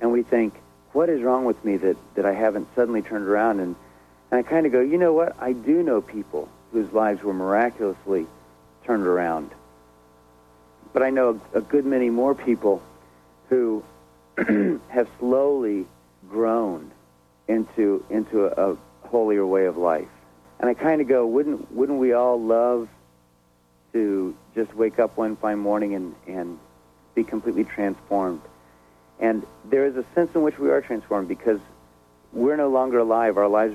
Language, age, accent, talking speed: English, 50-69, American, 165 wpm